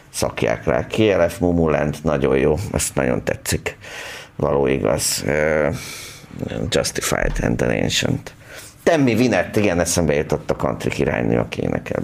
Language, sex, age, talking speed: Hungarian, male, 50-69, 125 wpm